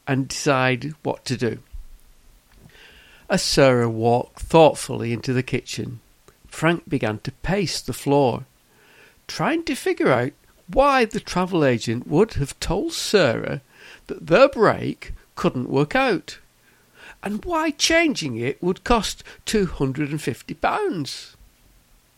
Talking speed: 115 wpm